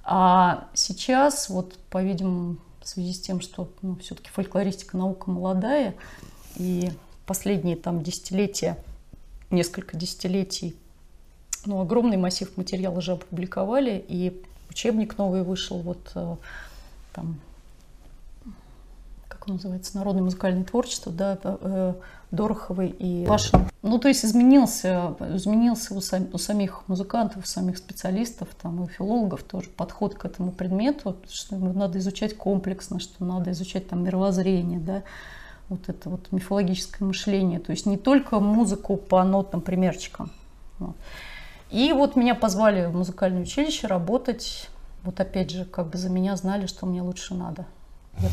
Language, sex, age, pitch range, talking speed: Russian, female, 30-49, 180-200 Hz, 135 wpm